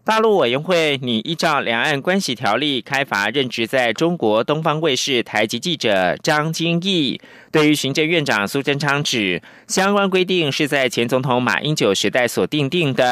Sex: male